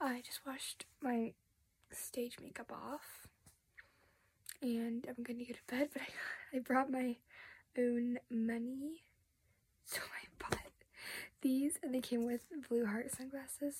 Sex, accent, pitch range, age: female, American, 240-290 Hz, 10-29